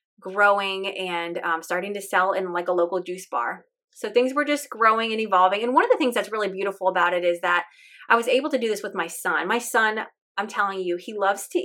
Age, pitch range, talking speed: 20-39, 190-255 Hz, 245 wpm